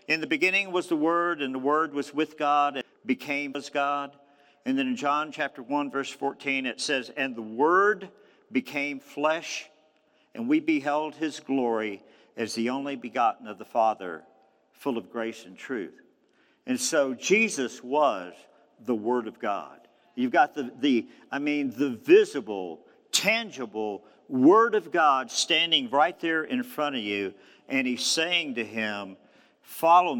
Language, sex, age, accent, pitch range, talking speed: English, male, 50-69, American, 130-200 Hz, 160 wpm